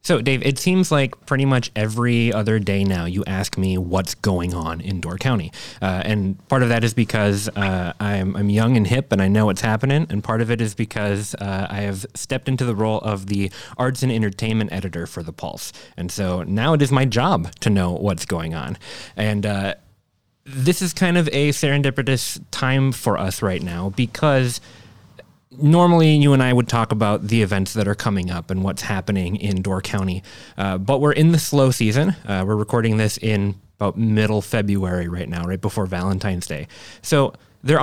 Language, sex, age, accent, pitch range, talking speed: English, male, 30-49, American, 100-130 Hz, 205 wpm